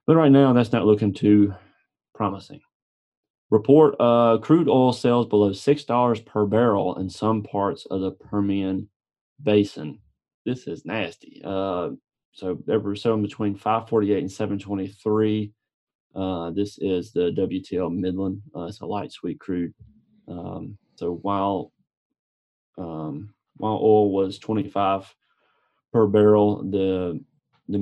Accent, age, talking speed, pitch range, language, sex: American, 30-49, 130 wpm, 95-115 Hz, English, male